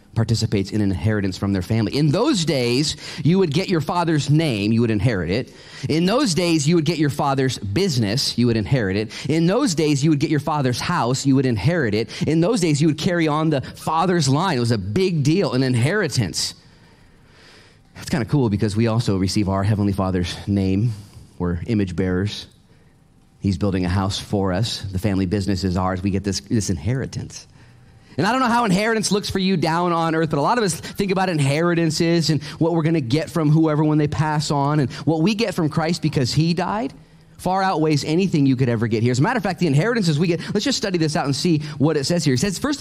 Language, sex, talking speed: English, male, 235 wpm